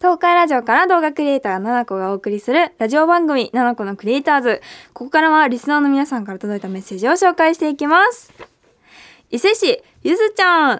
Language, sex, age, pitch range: Japanese, female, 20-39, 275-365 Hz